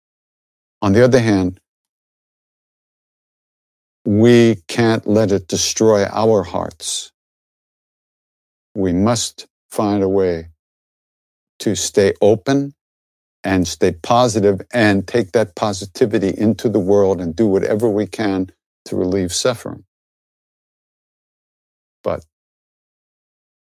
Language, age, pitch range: English, 60-79, 80-110 Hz